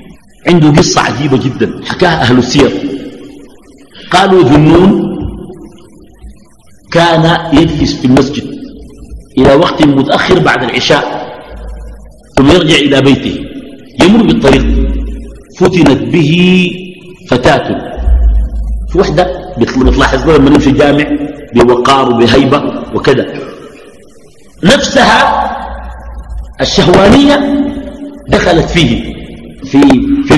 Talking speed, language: 80 wpm, Arabic